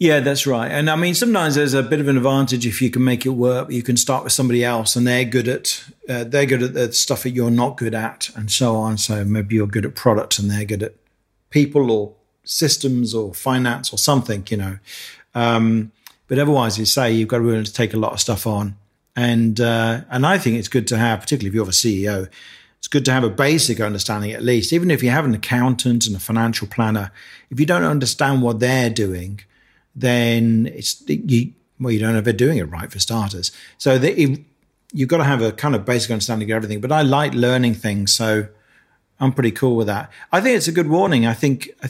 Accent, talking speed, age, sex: British, 235 wpm, 40-59, male